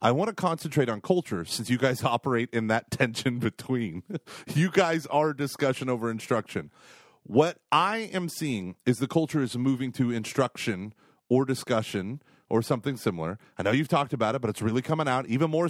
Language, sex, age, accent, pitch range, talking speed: English, male, 30-49, American, 115-160 Hz, 185 wpm